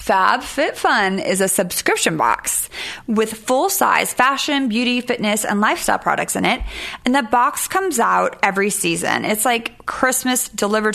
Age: 20-39